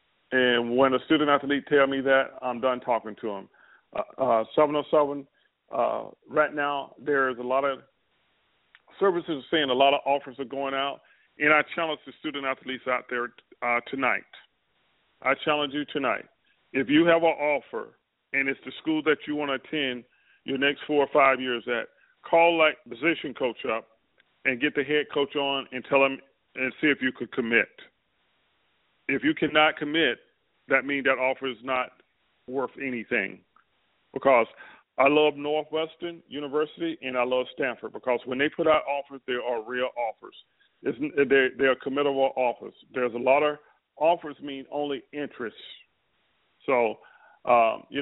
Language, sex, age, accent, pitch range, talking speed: English, male, 40-59, American, 130-150 Hz, 165 wpm